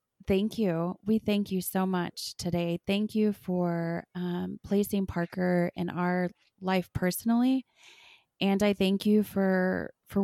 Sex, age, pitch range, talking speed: female, 20-39, 175-195 Hz, 140 wpm